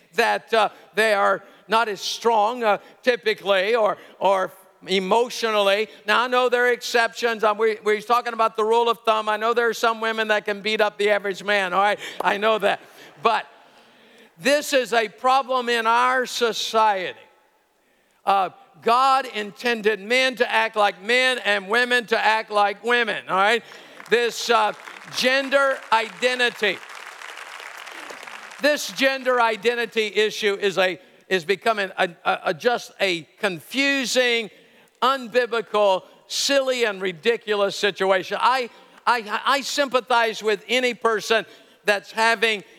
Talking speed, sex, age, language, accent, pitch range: 140 wpm, male, 50-69, English, American, 205-240 Hz